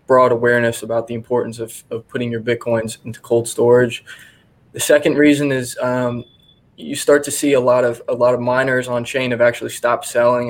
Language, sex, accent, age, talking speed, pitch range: English, male, American, 20-39, 200 wpm, 120-135 Hz